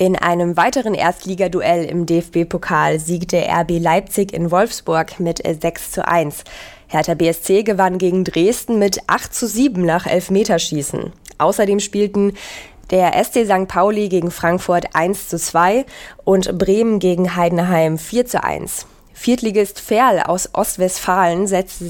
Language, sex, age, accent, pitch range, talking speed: German, female, 20-39, German, 170-200 Hz, 135 wpm